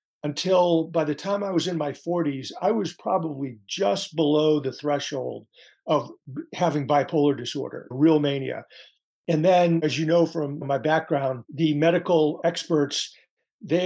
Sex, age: male, 50-69